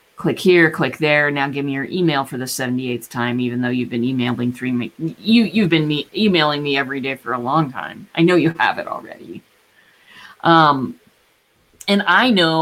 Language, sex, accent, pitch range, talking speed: English, female, American, 160-235 Hz, 190 wpm